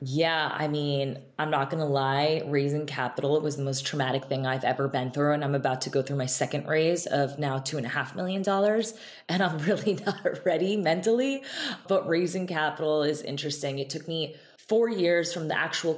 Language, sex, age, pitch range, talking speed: English, female, 20-39, 145-170 Hz, 210 wpm